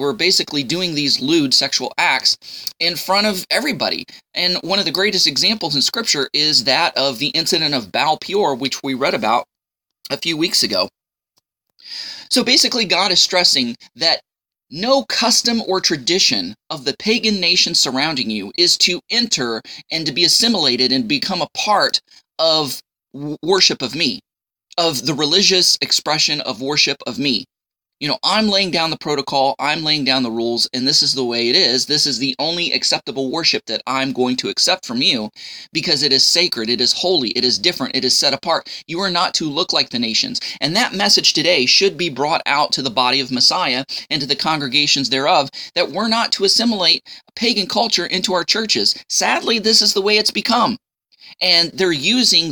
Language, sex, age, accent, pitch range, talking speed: English, male, 20-39, American, 140-205 Hz, 190 wpm